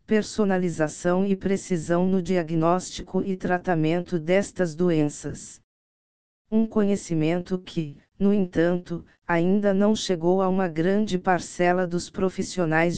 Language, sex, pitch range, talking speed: Portuguese, female, 175-190 Hz, 105 wpm